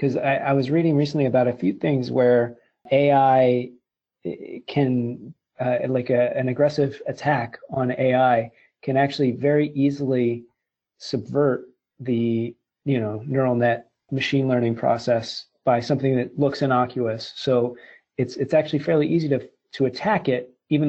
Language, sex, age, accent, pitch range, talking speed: English, male, 40-59, American, 120-140 Hz, 145 wpm